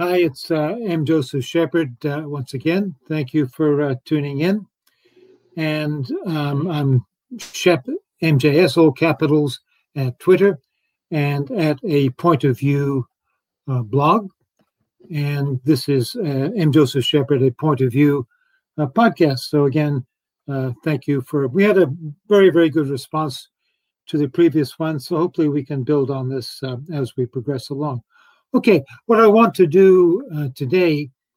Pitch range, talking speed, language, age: 140-170 Hz, 140 wpm, English, 60-79